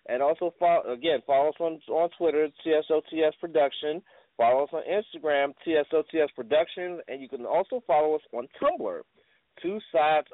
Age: 30-49